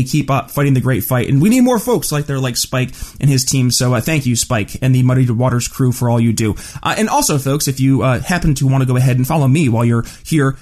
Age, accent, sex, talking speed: 30-49, American, male, 290 wpm